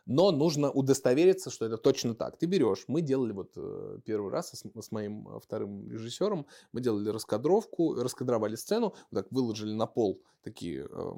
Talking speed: 155 wpm